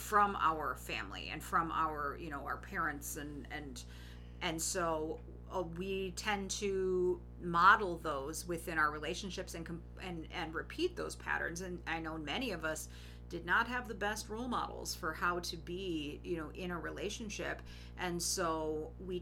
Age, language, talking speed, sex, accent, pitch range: 40-59, English, 170 wpm, female, American, 150-180 Hz